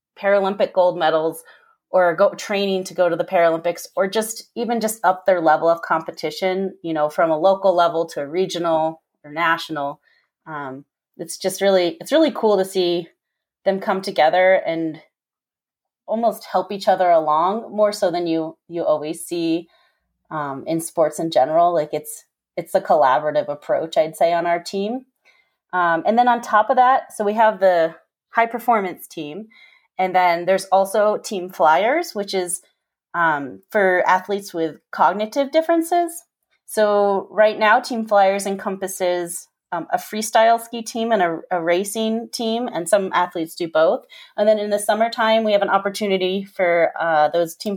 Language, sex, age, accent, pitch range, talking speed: English, female, 30-49, American, 170-220 Hz, 165 wpm